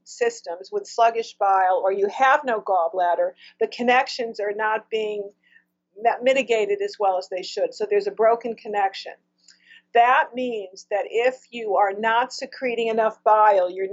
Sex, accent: female, American